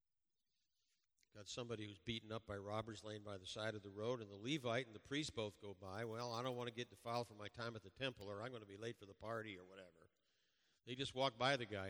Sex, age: male, 50-69